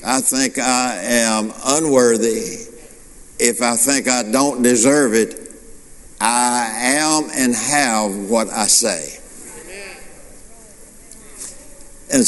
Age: 60-79